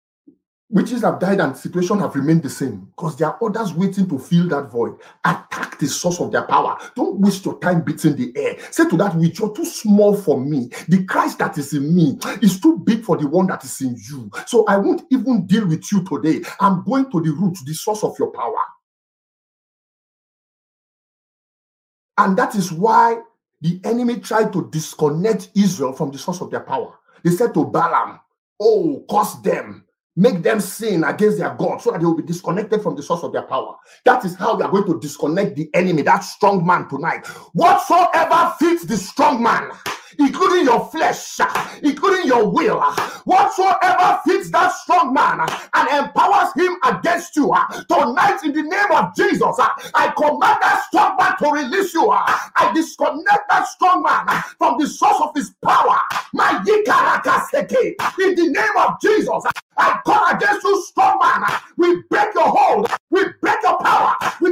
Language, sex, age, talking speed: English, male, 50-69, 185 wpm